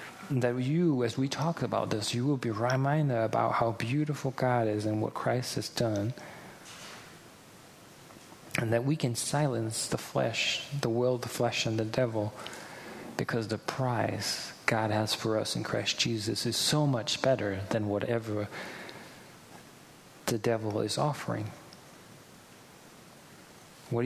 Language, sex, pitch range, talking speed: English, male, 110-135 Hz, 140 wpm